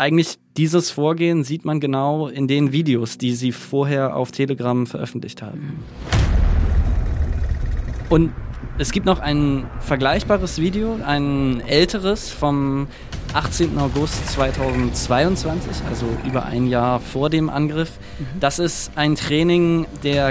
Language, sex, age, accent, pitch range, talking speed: German, male, 20-39, German, 120-150 Hz, 120 wpm